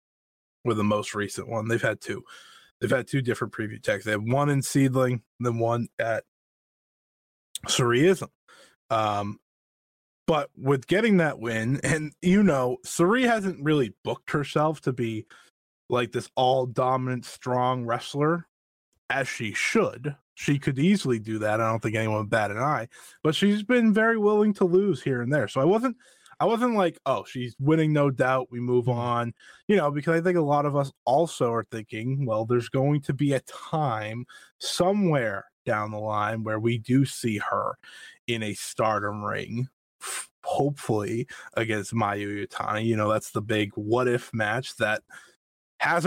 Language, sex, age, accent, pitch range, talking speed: English, male, 20-39, American, 115-155 Hz, 170 wpm